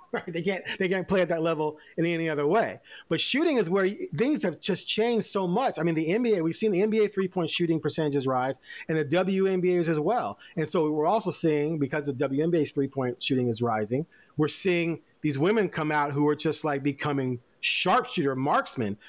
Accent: American